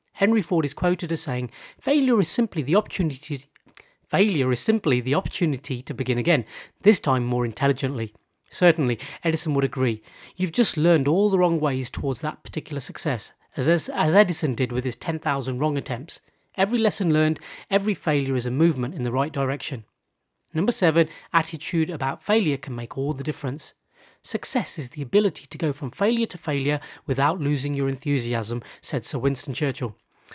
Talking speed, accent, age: 175 wpm, British, 30-49